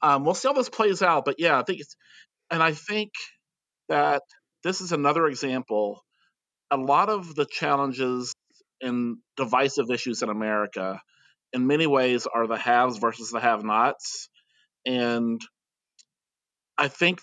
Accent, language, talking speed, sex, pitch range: American, English, 145 wpm, male, 115-145 Hz